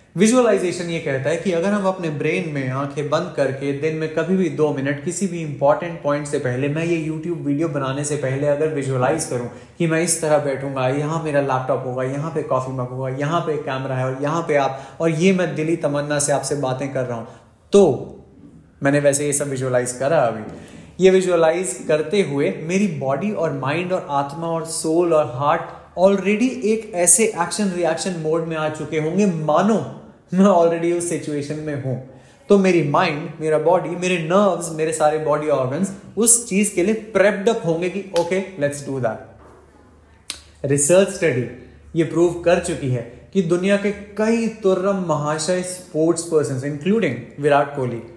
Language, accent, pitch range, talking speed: Hindi, native, 140-180 Hz, 185 wpm